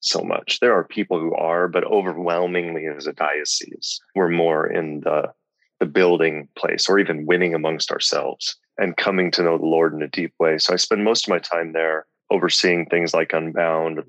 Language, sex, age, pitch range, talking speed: English, male, 30-49, 80-95 Hz, 195 wpm